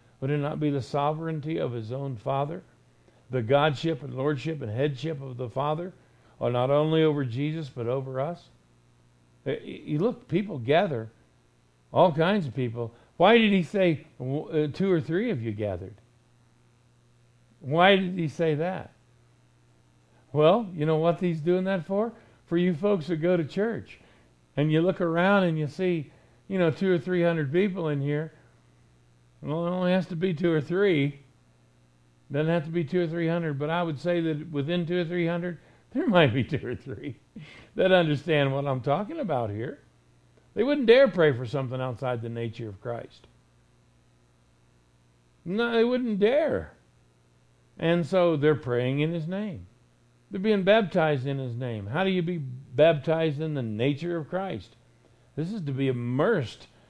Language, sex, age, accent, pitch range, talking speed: English, male, 60-79, American, 120-175 Hz, 175 wpm